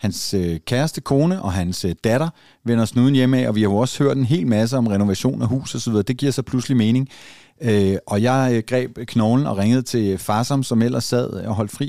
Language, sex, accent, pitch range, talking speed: Danish, male, native, 105-130 Hz, 215 wpm